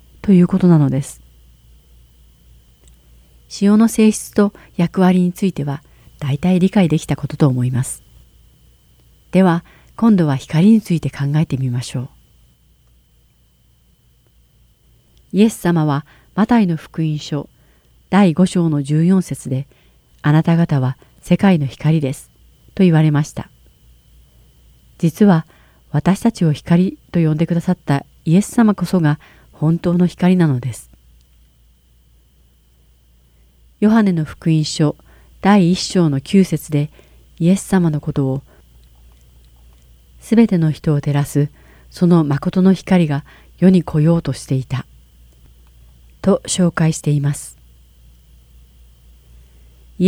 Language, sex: Japanese, female